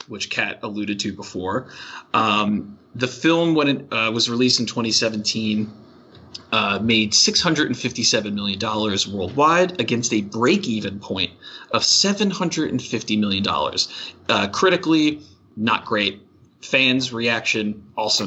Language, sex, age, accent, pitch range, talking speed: English, male, 30-49, American, 105-135 Hz, 110 wpm